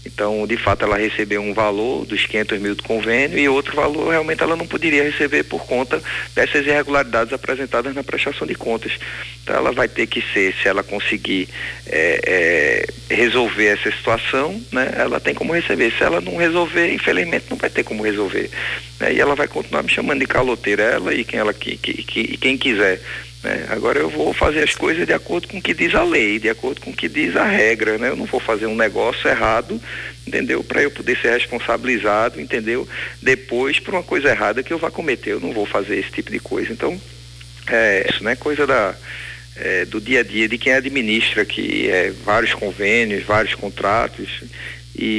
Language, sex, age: Portuguese, male, 40-59